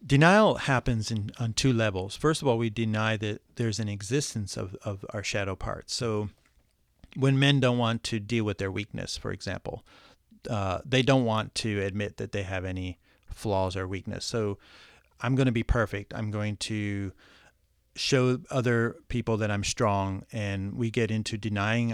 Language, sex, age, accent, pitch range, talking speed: English, male, 40-59, American, 100-125 Hz, 175 wpm